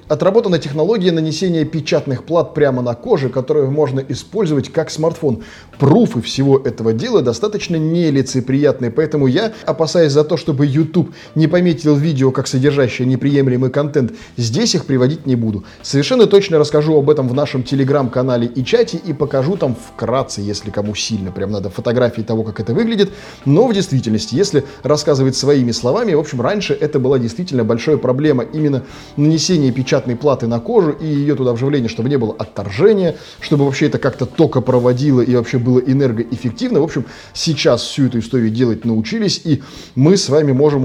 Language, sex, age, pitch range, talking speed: Russian, male, 20-39, 120-150 Hz, 165 wpm